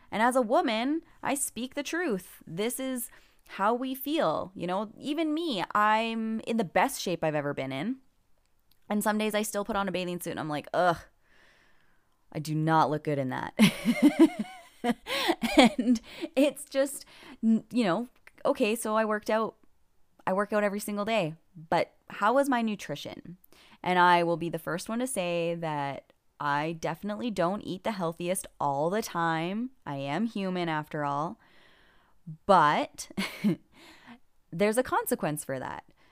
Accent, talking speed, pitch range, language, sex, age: American, 165 wpm, 170-245 Hz, English, female, 20-39